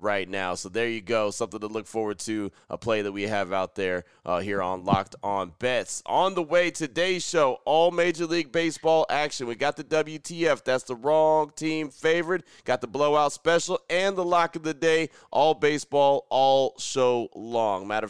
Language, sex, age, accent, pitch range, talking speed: English, male, 30-49, American, 110-140 Hz, 195 wpm